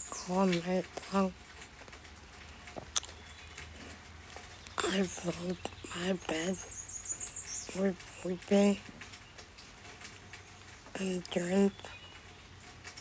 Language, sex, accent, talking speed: English, female, American, 50 wpm